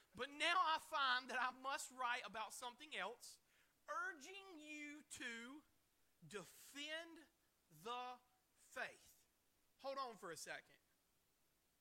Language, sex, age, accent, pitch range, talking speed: English, male, 30-49, American, 225-300 Hz, 110 wpm